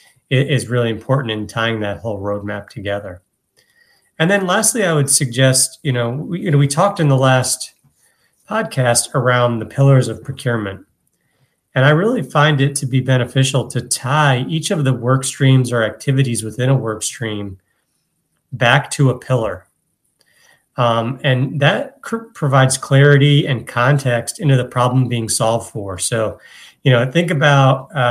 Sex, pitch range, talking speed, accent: male, 115-145 Hz, 155 wpm, American